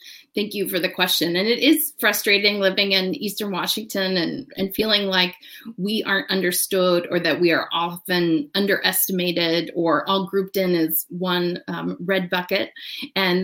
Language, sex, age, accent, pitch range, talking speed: English, female, 30-49, American, 175-220 Hz, 160 wpm